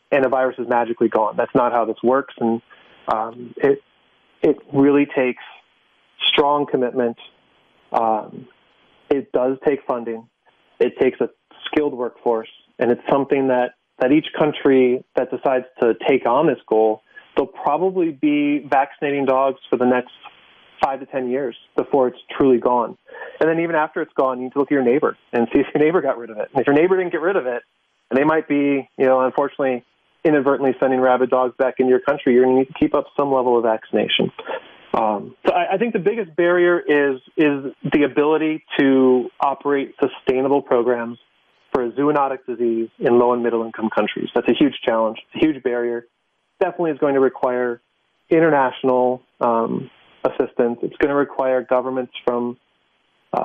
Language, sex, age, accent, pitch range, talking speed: English, male, 30-49, American, 120-145 Hz, 185 wpm